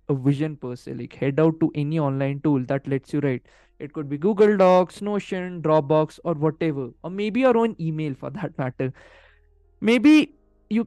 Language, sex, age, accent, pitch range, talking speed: Hindi, male, 20-39, native, 155-215 Hz, 190 wpm